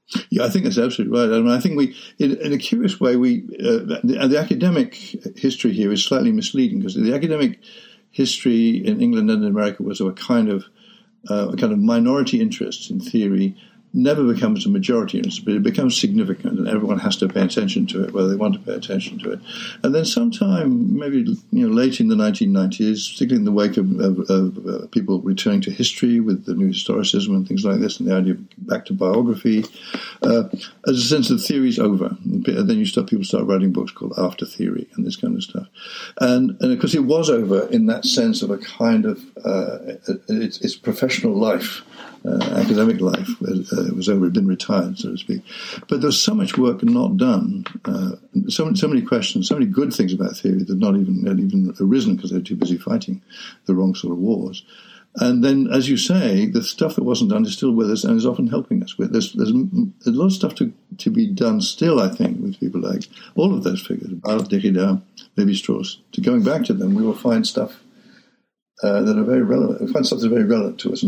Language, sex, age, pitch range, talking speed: English, male, 60-79, 200-235 Hz, 220 wpm